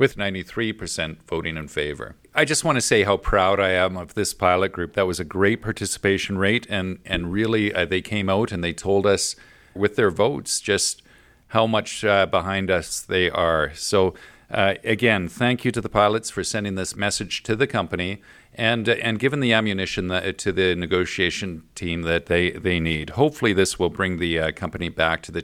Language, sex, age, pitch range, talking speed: English, male, 40-59, 90-110 Hz, 205 wpm